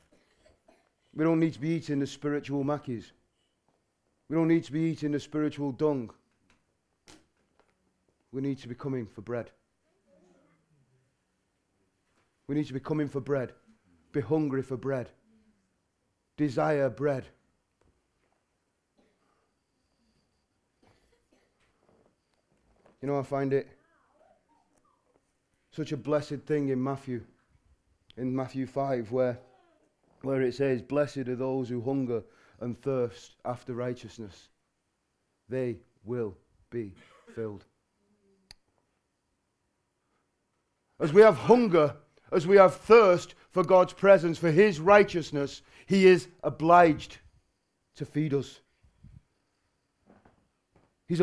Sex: male